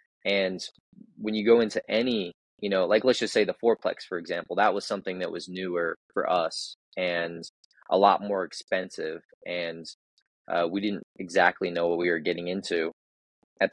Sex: male